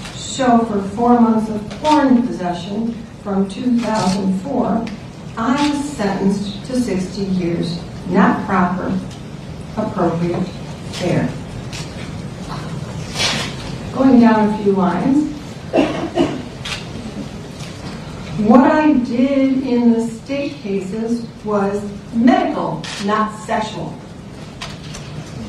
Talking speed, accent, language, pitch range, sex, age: 80 wpm, American, English, 195-250 Hz, female, 60-79